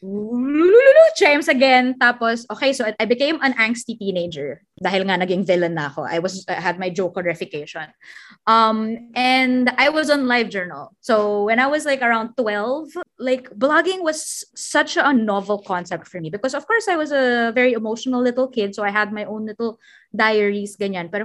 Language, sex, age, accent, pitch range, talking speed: Filipino, female, 20-39, native, 200-265 Hz, 185 wpm